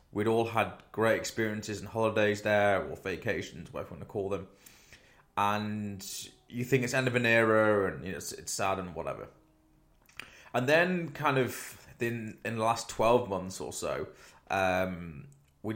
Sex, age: male, 20-39